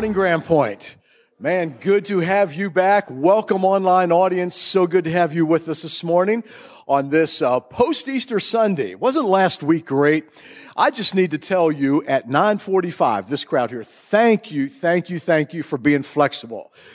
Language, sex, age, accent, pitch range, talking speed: English, male, 50-69, American, 145-185 Hz, 175 wpm